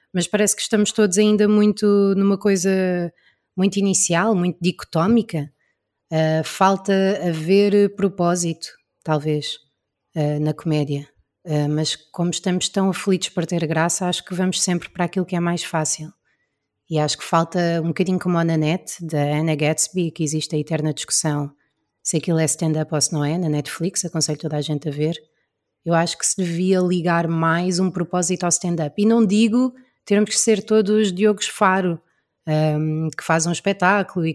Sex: female